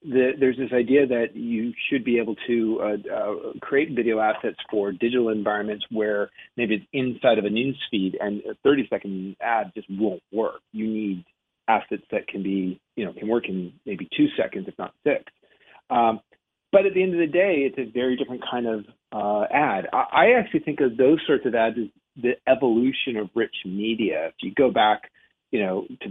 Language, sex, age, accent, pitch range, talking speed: English, male, 40-59, American, 110-150 Hz, 200 wpm